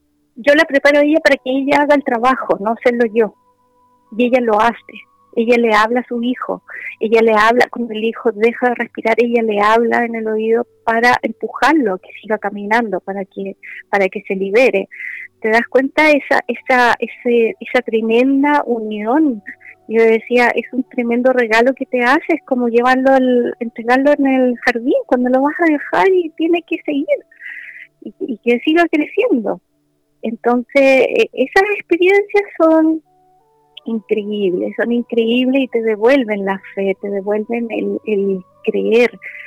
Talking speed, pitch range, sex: 160 wpm, 220-280 Hz, female